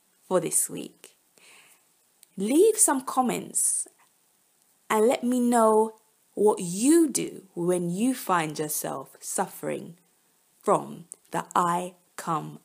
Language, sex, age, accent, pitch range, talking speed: English, female, 20-39, British, 180-240 Hz, 105 wpm